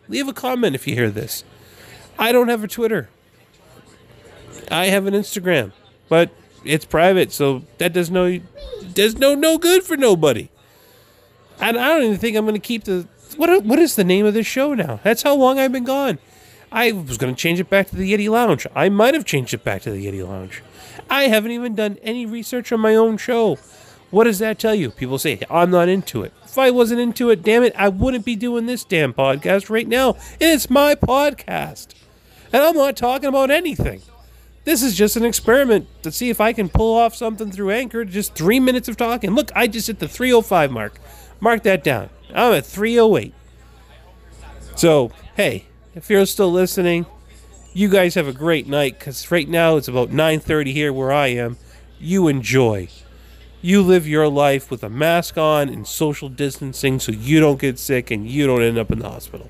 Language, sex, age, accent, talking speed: English, male, 30-49, American, 205 wpm